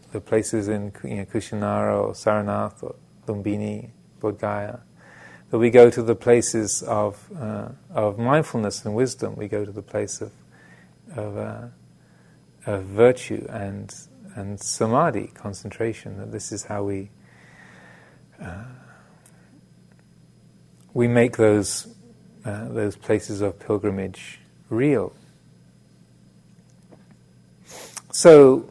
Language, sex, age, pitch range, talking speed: English, male, 30-49, 105-120 Hz, 110 wpm